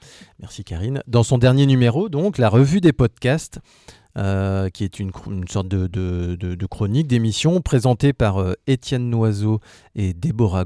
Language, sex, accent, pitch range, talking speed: French, male, French, 100-130 Hz, 175 wpm